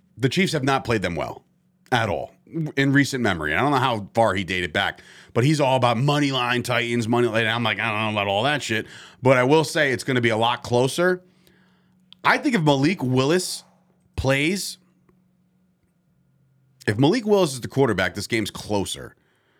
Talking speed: 195 wpm